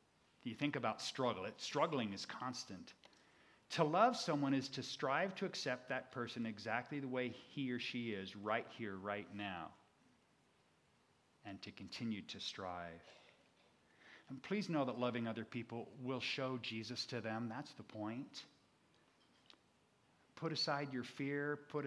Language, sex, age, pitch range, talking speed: English, male, 40-59, 110-135 Hz, 145 wpm